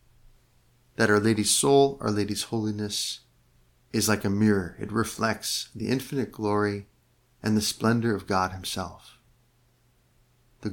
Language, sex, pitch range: English, male, 100-120 Hz